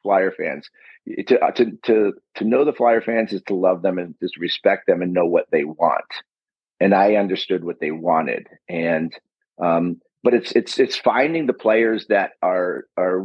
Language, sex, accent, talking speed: English, male, American, 185 wpm